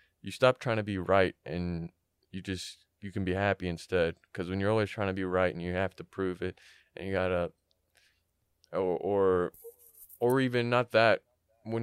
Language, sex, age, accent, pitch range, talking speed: English, male, 20-39, American, 95-115 Hz, 195 wpm